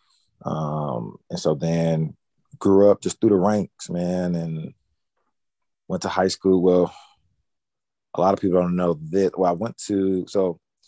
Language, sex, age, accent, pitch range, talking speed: English, male, 30-49, American, 85-95 Hz, 160 wpm